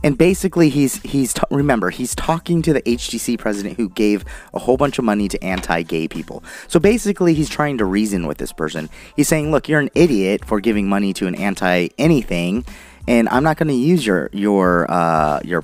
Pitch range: 105-150 Hz